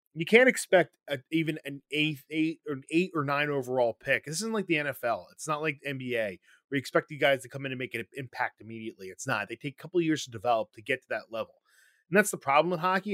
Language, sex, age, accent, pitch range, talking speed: English, male, 20-39, American, 135-180 Hz, 270 wpm